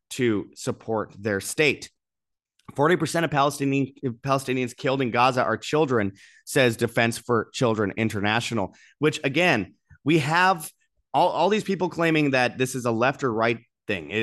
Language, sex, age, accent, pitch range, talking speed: English, male, 20-39, American, 120-155 Hz, 145 wpm